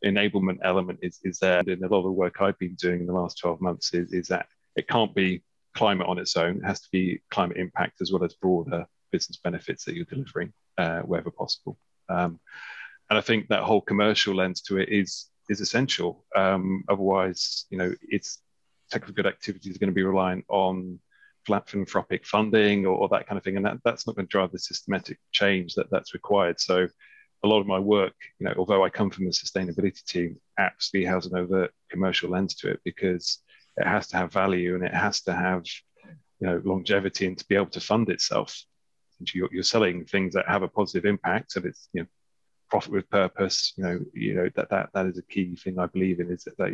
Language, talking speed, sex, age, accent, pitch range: English, 220 wpm, male, 30-49, British, 90-100 Hz